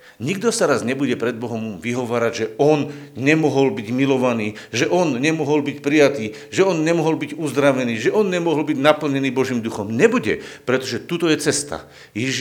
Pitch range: 95-135 Hz